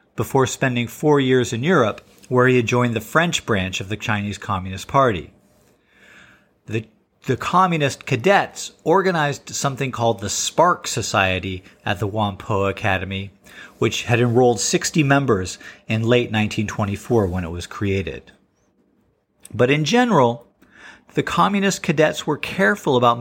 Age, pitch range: 40-59, 105-140 Hz